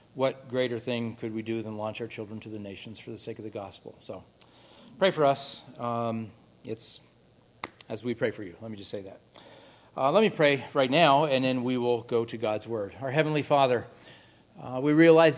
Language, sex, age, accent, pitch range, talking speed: English, male, 40-59, American, 125-160 Hz, 215 wpm